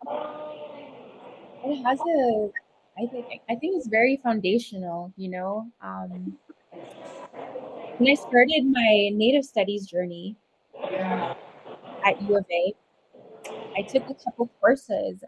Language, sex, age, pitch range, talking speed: English, female, 20-39, 185-230 Hz, 120 wpm